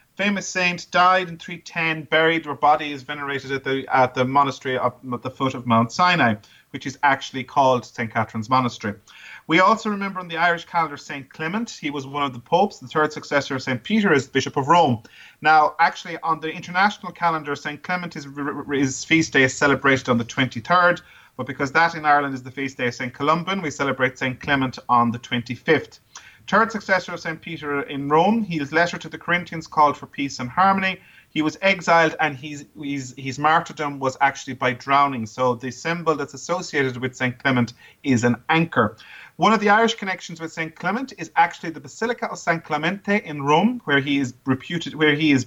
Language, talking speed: English, 200 wpm